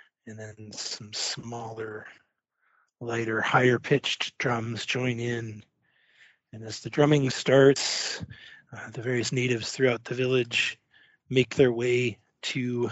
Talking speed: 120 wpm